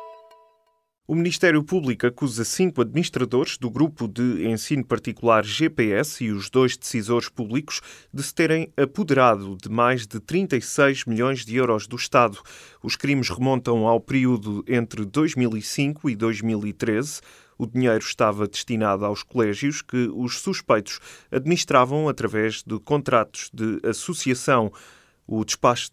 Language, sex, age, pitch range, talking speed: Portuguese, male, 20-39, 110-135 Hz, 130 wpm